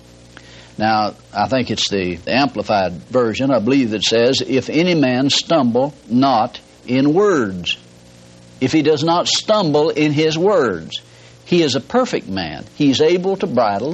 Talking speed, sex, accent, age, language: 150 wpm, male, American, 60-79, English